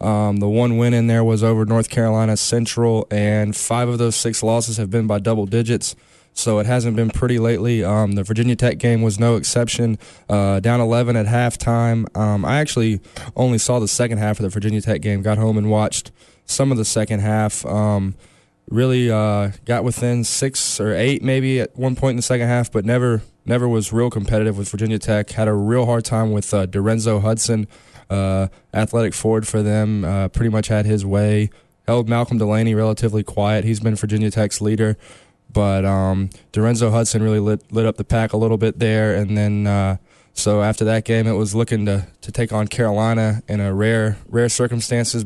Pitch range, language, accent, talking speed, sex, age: 105-115 Hz, English, American, 200 wpm, male, 20-39